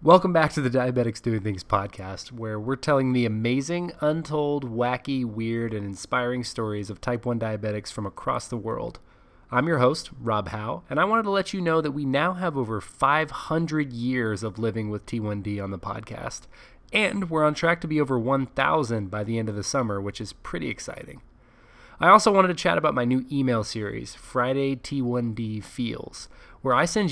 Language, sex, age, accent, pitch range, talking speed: English, male, 20-39, American, 110-150 Hz, 190 wpm